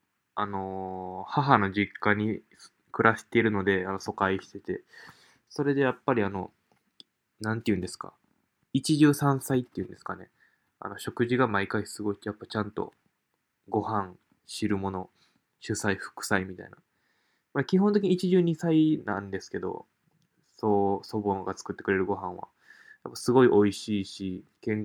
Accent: native